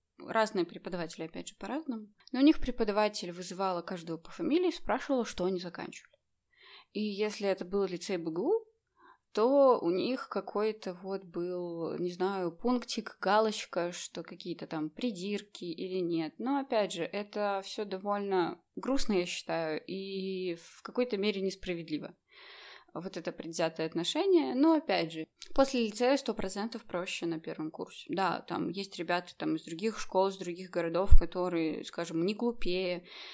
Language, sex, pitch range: Russian, female, 175-230 Hz